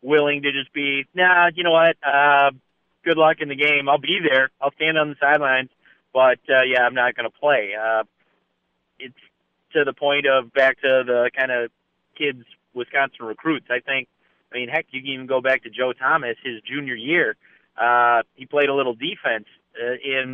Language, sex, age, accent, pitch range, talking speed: English, male, 30-49, American, 125-145 Hz, 200 wpm